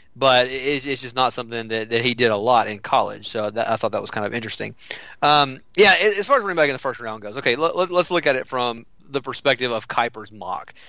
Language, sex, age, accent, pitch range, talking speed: English, male, 30-49, American, 115-135 Hz, 250 wpm